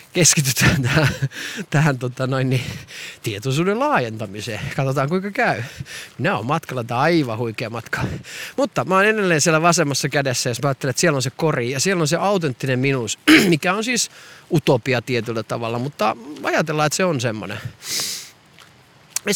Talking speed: 145 wpm